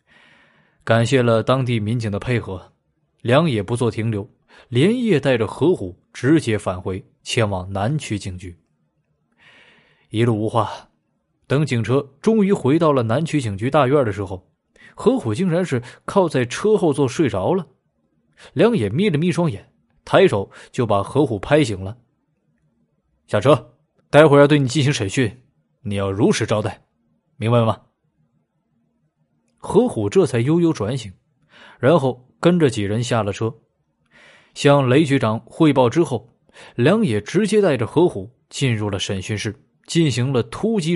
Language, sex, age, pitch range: Chinese, male, 20-39, 105-155 Hz